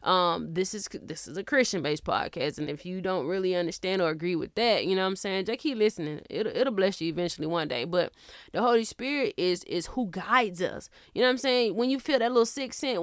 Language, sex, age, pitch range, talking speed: English, female, 20-39, 175-235 Hz, 255 wpm